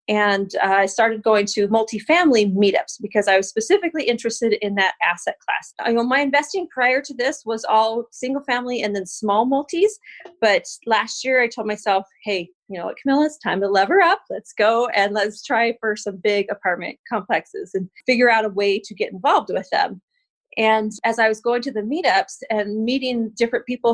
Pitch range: 210-280 Hz